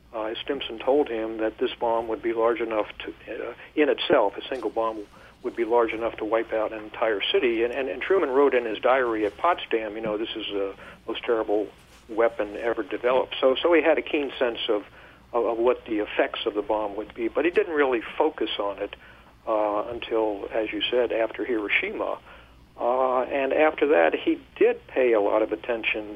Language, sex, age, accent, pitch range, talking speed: English, male, 60-79, American, 110-160 Hz, 205 wpm